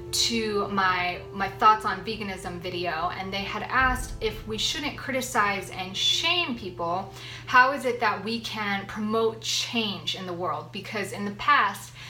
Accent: American